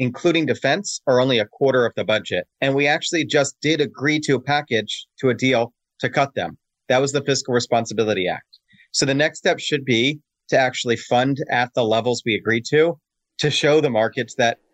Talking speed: 205 wpm